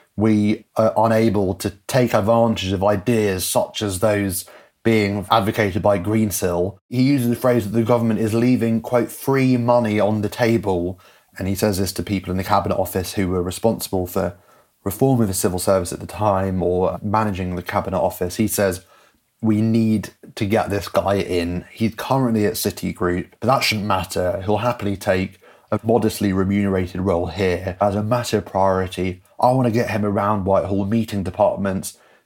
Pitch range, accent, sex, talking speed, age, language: 95-115 Hz, British, male, 175 wpm, 30-49, English